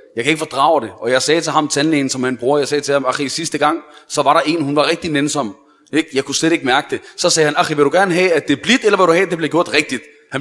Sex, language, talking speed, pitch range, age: male, Danish, 330 wpm, 140-185 Hz, 30-49